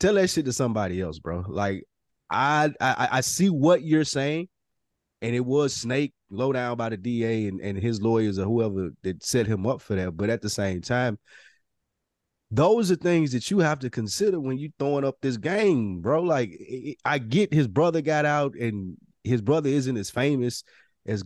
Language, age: English, 30-49